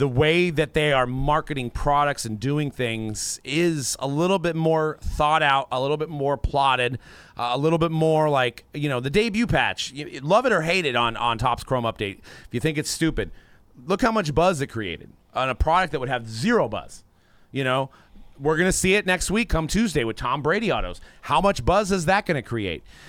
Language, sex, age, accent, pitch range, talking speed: English, male, 30-49, American, 110-160 Hz, 225 wpm